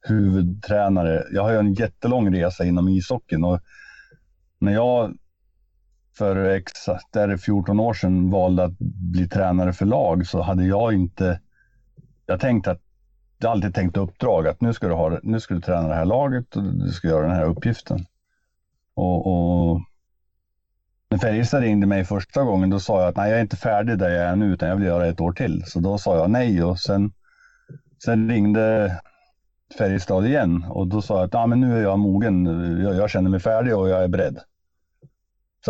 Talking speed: 190 wpm